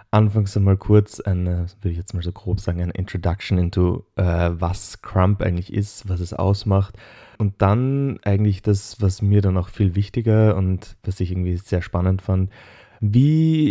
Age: 20-39